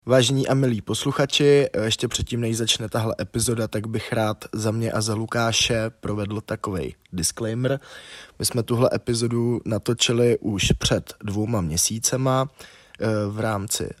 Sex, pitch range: male, 105-120 Hz